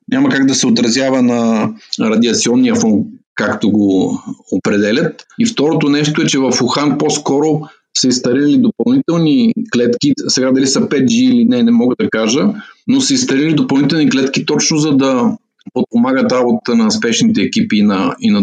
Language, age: Bulgarian, 50-69